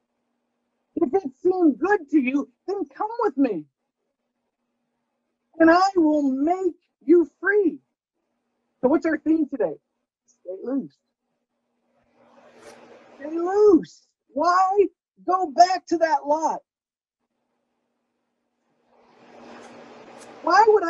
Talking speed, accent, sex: 95 wpm, American, male